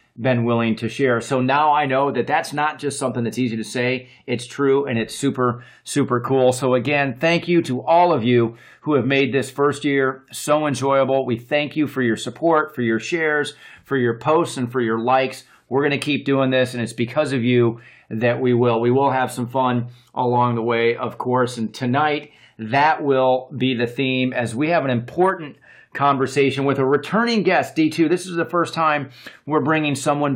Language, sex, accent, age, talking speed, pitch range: English, male, American, 40-59, 210 wpm, 125-150 Hz